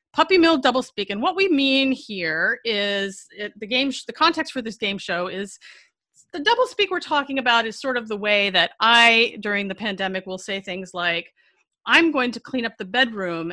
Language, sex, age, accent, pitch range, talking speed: English, female, 30-49, American, 200-290 Hz, 195 wpm